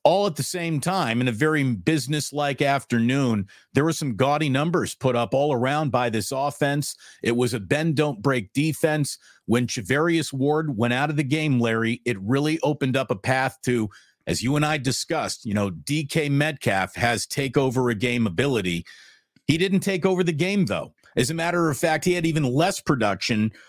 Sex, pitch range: male, 125-165 Hz